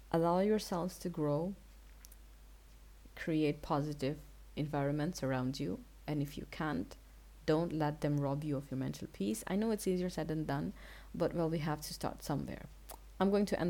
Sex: female